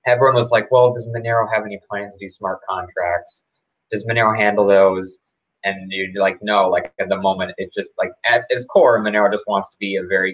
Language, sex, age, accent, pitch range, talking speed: English, male, 20-39, American, 95-120 Hz, 220 wpm